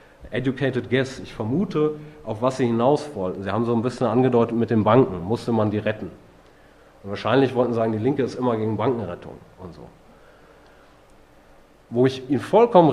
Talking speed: 180 wpm